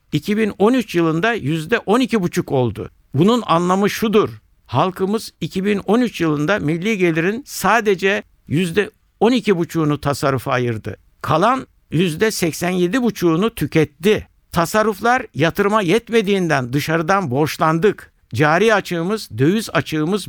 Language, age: Turkish, 60-79